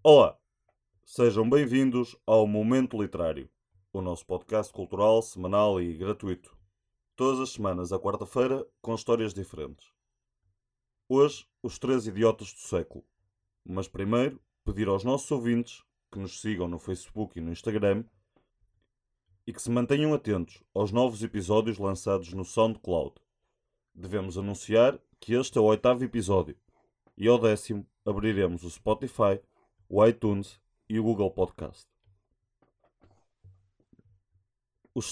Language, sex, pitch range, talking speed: Portuguese, male, 95-120 Hz, 125 wpm